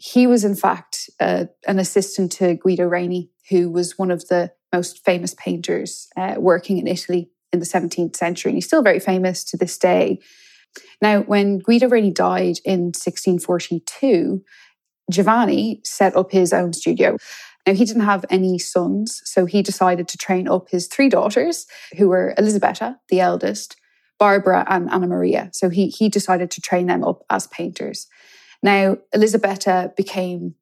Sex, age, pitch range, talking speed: female, 20-39, 180-205 Hz, 165 wpm